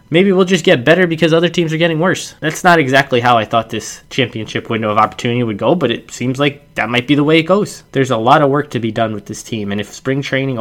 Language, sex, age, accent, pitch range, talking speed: English, male, 10-29, American, 105-125 Hz, 285 wpm